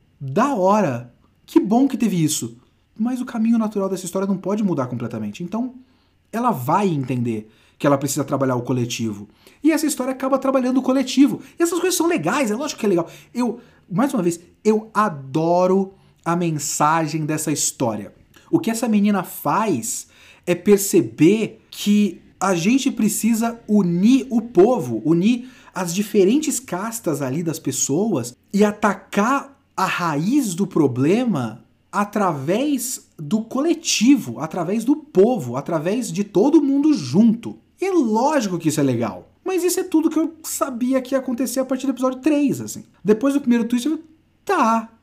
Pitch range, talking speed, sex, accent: 170-265 Hz, 160 wpm, male, Brazilian